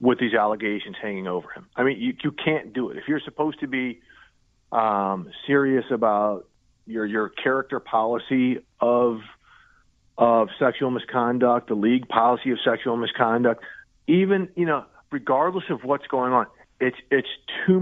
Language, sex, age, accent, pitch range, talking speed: English, male, 40-59, American, 110-130 Hz, 155 wpm